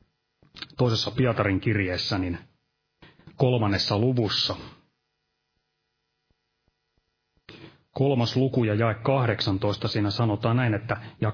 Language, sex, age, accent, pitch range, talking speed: Finnish, male, 30-49, native, 105-135 Hz, 85 wpm